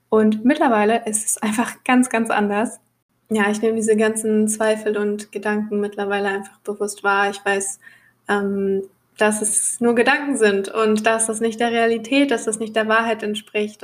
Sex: female